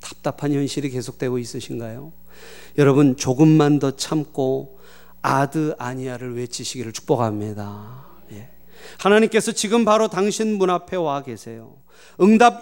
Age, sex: 40-59, male